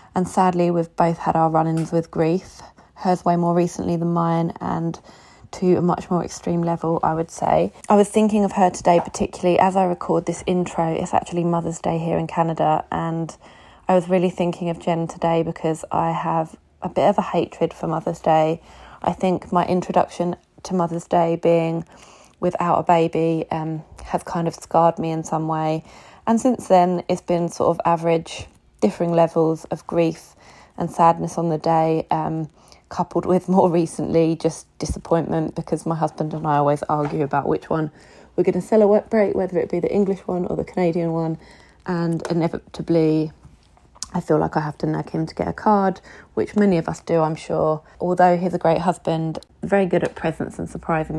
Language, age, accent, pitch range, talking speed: English, 20-39, British, 160-180 Hz, 195 wpm